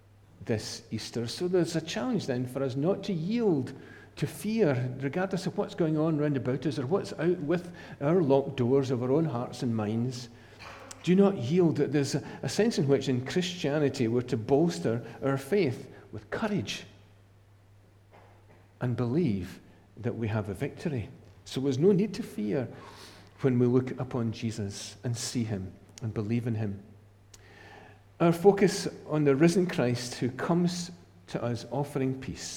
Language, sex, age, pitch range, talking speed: English, male, 50-69, 110-150 Hz, 165 wpm